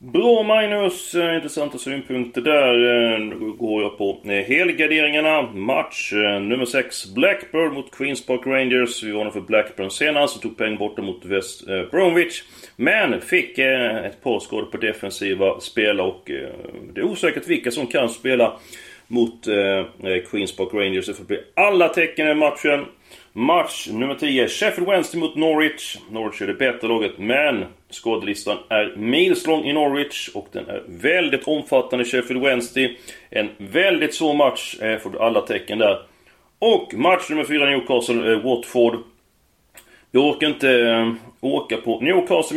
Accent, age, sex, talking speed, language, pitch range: native, 30-49, male, 150 wpm, Swedish, 115-155 Hz